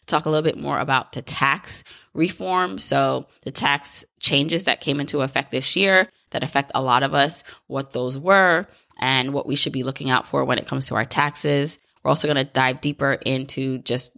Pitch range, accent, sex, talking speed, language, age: 135-160 Hz, American, female, 210 wpm, English, 20-39